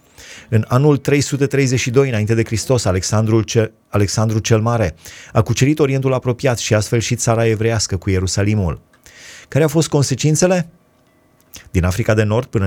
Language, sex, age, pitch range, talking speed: Romanian, male, 30-49, 105-130 Hz, 140 wpm